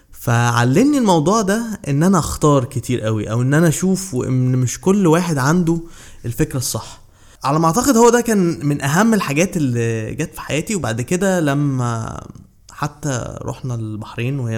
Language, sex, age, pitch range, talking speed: Arabic, male, 20-39, 120-170 Hz, 160 wpm